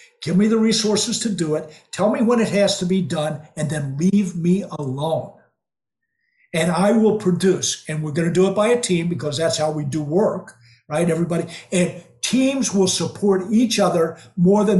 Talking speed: 200 wpm